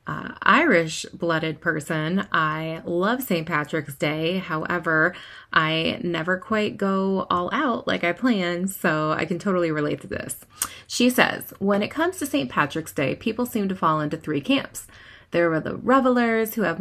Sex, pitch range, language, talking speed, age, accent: female, 165-235 Hz, English, 170 wpm, 30-49, American